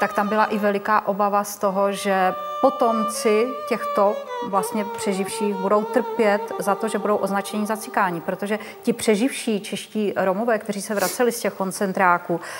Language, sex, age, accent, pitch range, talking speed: Czech, female, 30-49, native, 195-225 Hz, 155 wpm